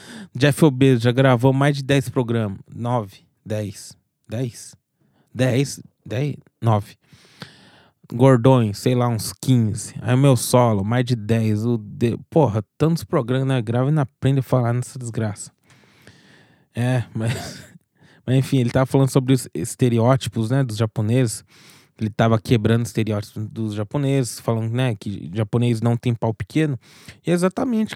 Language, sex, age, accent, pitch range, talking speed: Portuguese, male, 20-39, Brazilian, 115-145 Hz, 145 wpm